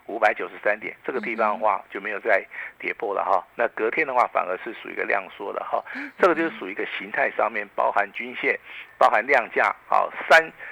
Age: 50-69